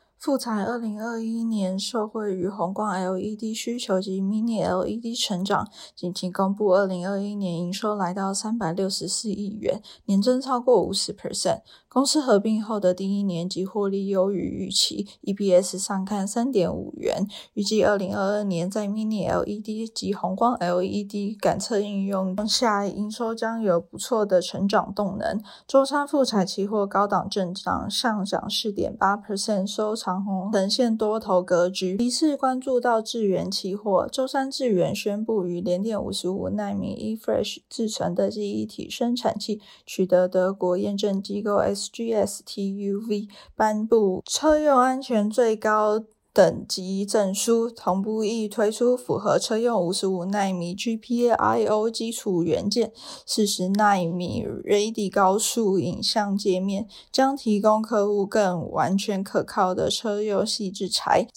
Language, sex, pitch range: Chinese, female, 195-225 Hz